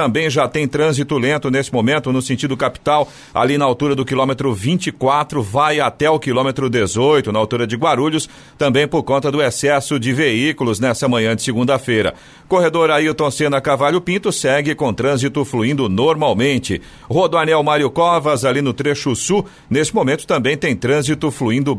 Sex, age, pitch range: male, 50-69, 130-155 Hz